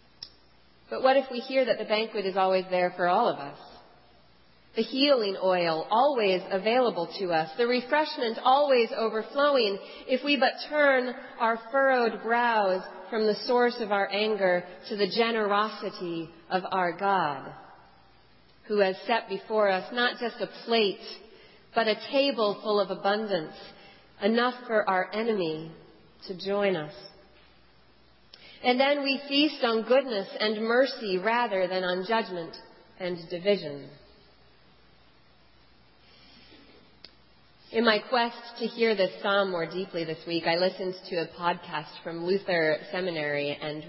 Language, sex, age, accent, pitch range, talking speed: English, female, 40-59, American, 180-230 Hz, 140 wpm